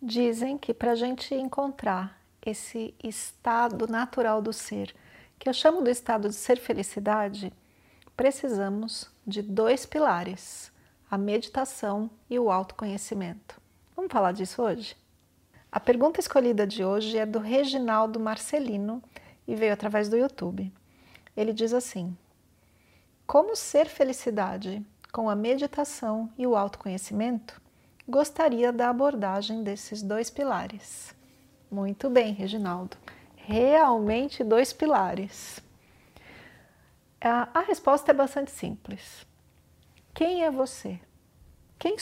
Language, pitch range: Portuguese, 200-255 Hz